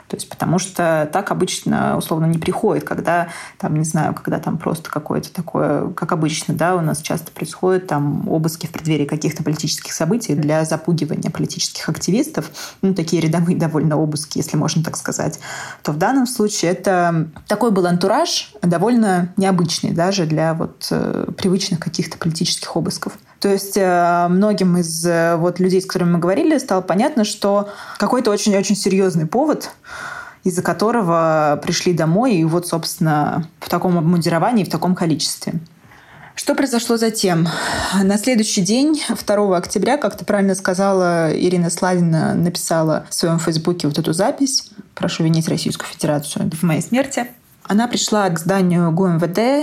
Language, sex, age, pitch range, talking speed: Russian, female, 20-39, 165-205 Hz, 150 wpm